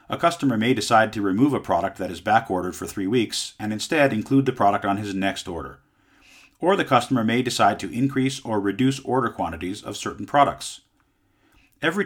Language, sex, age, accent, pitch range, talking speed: English, male, 40-59, American, 100-135 Hz, 190 wpm